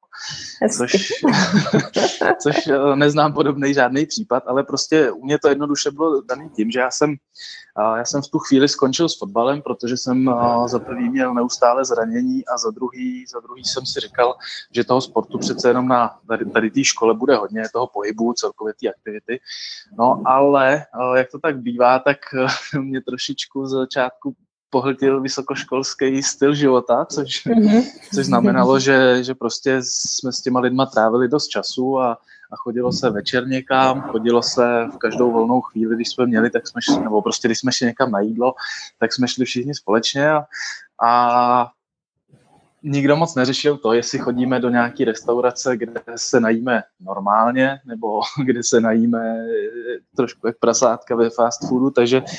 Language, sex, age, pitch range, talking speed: Czech, male, 20-39, 120-140 Hz, 165 wpm